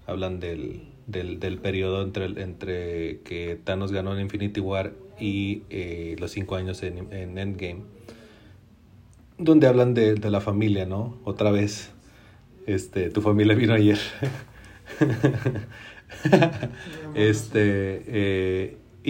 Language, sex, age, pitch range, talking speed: Spanish, male, 30-49, 95-120 Hz, 120 wpm